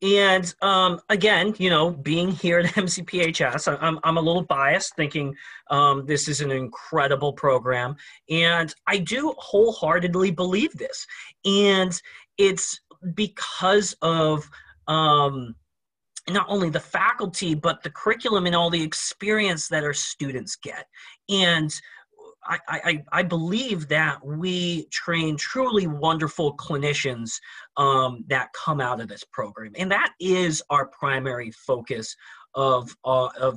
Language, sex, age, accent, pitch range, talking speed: English, male, 30-49, American, 140-180 Hz, 130 wpm